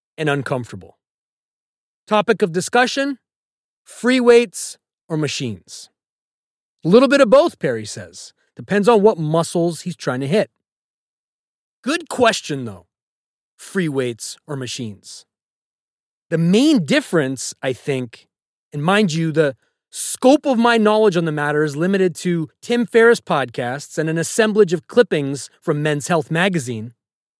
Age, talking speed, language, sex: 30-49, 135 wpm, English, male